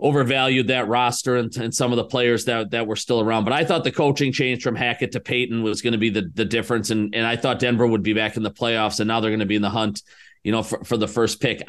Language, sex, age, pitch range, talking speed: English, male, 30-49, 110-130 Hz, 300 wpm